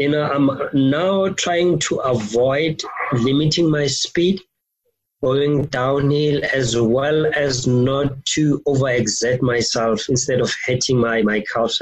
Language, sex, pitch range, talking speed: English, male, 135-165 Hz, 125 wpm